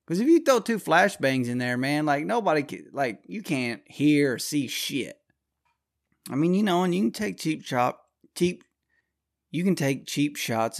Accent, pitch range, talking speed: American, 115-145 Hz, 195 wpm